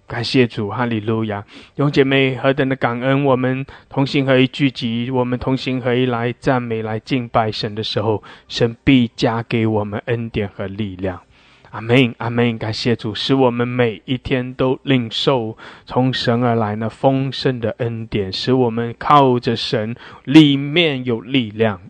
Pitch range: 115-140 Hz